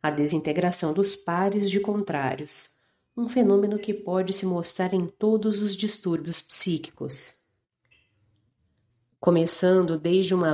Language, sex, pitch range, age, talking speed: Portuguese, female, 160-205 Hz, 40-59, 115 wpm